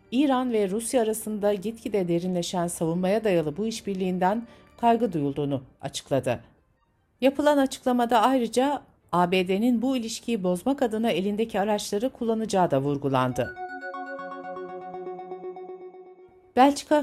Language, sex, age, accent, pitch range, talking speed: Turkish, female, 60-79, native, 175-230 Hz, 95 wpm